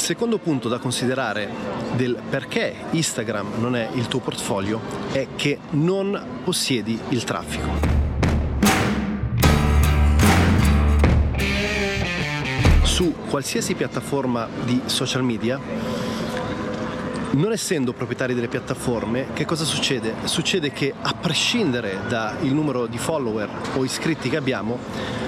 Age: 30-49